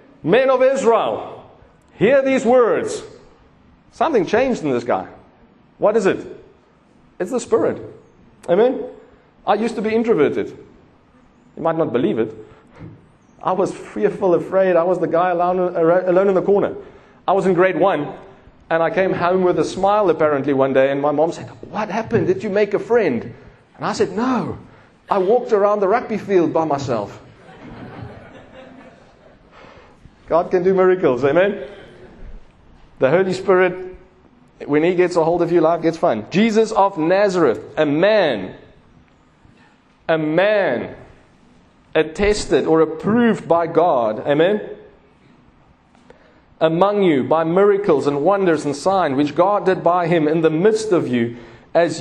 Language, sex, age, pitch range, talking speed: English, male, 40-59, 165-210 Hz, 150 wpm